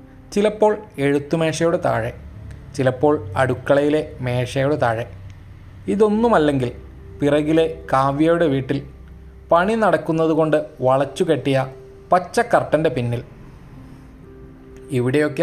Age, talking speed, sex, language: 20-39, 65 wpm, male, Malayalam